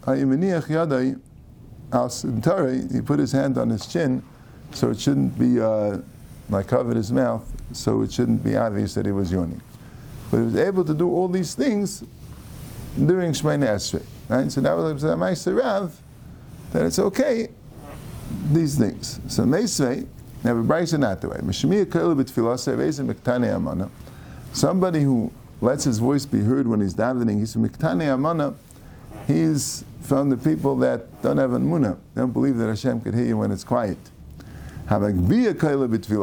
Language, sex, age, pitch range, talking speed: English, male, 50-69, 105-140 Hz, 130 wpm